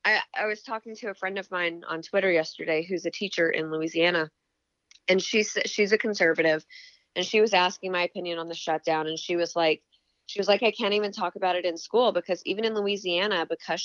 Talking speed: 220 wpm